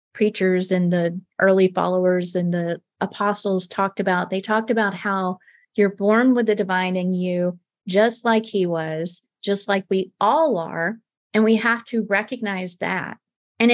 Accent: American